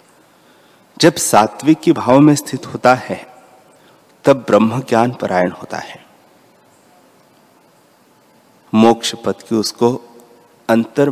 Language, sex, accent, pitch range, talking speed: Hindi, male, native, 105-130 Hz, 105 wpm